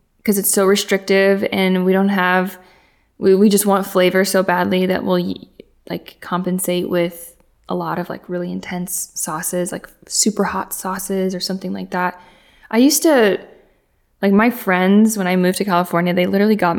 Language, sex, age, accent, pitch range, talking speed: English, female, 20-39, American, 180-220 Hz, 175 wpm